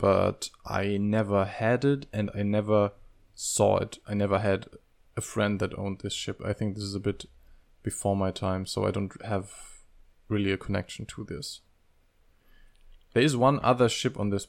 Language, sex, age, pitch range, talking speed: English, male, 20-39, 95-115 Hz, 180 wpm